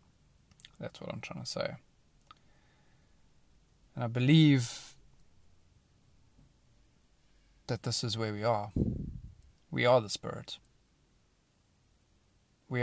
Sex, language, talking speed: male, English, 95 wpm